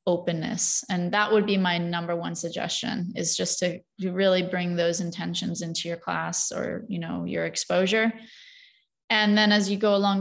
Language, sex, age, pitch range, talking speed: English, female, 20-39, 180-220 Hz, 175 wpm